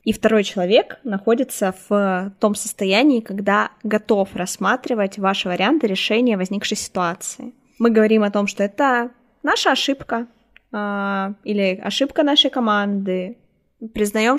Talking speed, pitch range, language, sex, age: 115 wpm, 195-240 Hz, Russian, female, 20-39